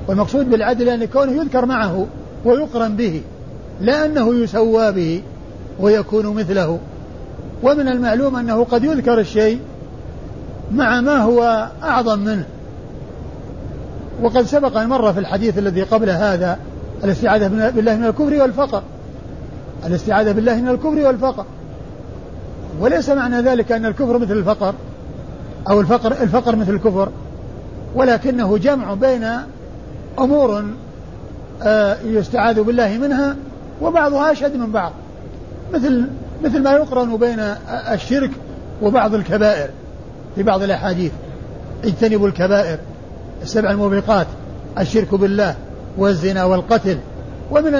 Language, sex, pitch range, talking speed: Arabic, male, 205-260 Hz, 105 wpm